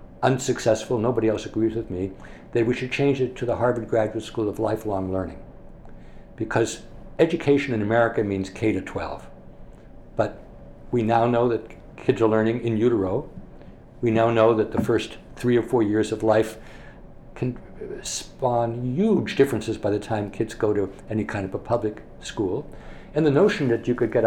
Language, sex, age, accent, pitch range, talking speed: English, male, 60-79, American, 110-130 Hz, 180 wpm